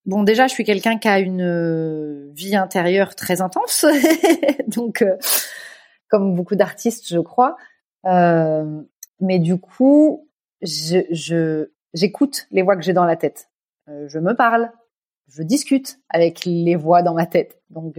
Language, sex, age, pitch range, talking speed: French, female, 30-49, 180-250 Hz, 145 wpm